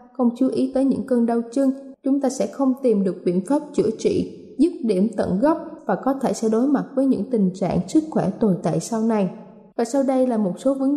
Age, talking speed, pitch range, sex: 20-39, 245 wpm, 210-275 Hz, female